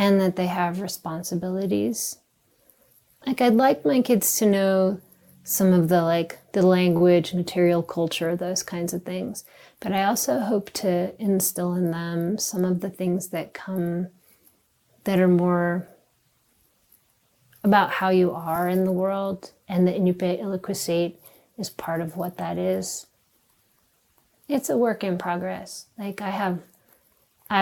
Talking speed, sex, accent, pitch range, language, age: 145 wpm, female, American, 175-200 Hz, English, 30-49